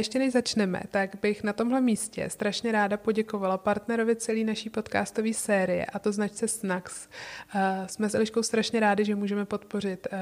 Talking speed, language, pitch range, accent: 165 wpm, Czech, 195-215 Hz, native